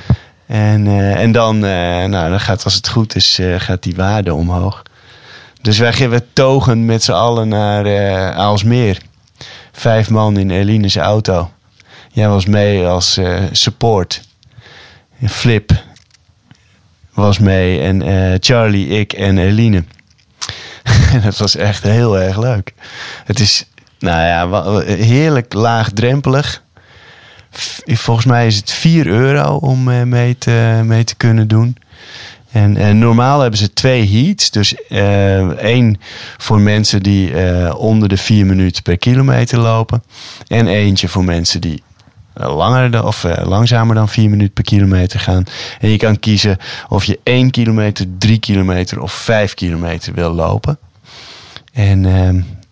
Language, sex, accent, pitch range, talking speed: Dutch, male, Dutch, 95-115 Hz, 140 wpm